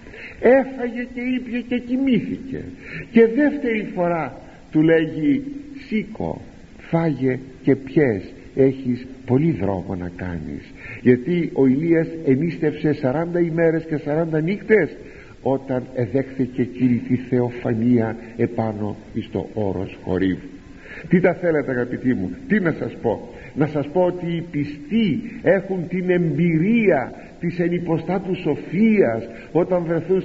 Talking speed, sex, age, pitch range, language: 120 wpm, male, 50-69, 115-175 Hz, Greek